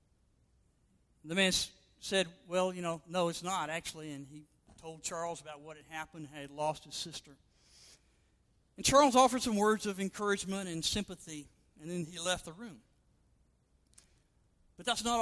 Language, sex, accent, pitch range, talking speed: English, male, American, 160-220 Hz, 160 wpm